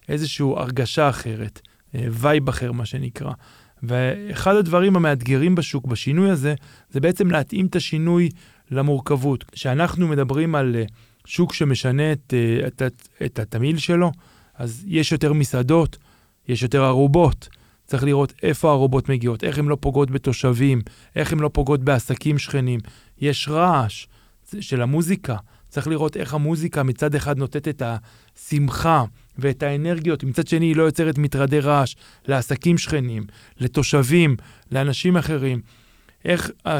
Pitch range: 130-160 Hz